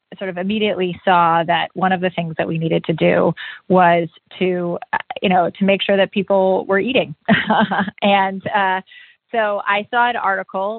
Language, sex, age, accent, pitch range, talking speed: English, female, 30-49, American, 185-220 Hz, 180 wpm